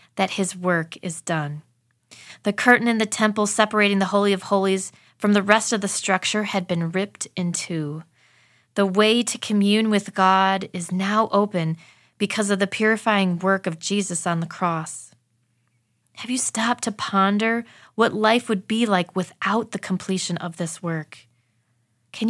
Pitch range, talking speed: 160-205 Hz, 165 wpm